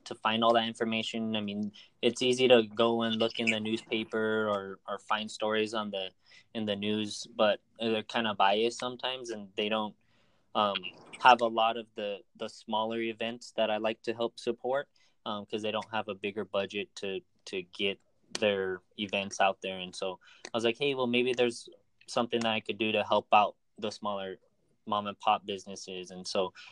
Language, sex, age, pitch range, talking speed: English, male, 20-39, 100-115 Hz, 200 wpm